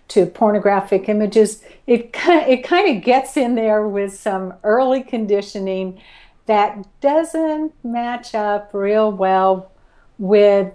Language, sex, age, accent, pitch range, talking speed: English, female, 60-79, American, 180-220 Hz, 130 wpm